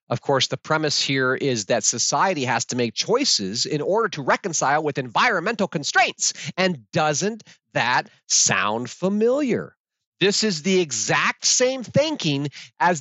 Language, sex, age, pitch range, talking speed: English, male, 40-59, 150-200 Hz, 145 wpm